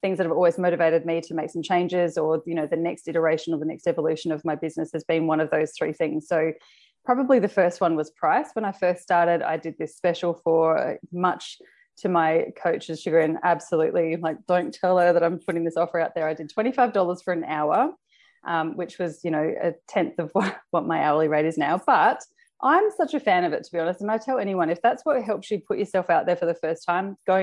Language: English